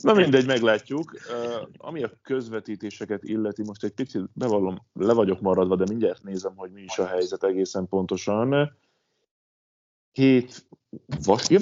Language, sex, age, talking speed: Hungarian, male, 30-49, 150 wpm